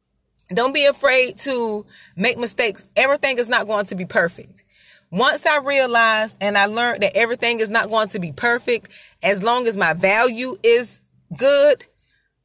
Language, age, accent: English, 30-49, American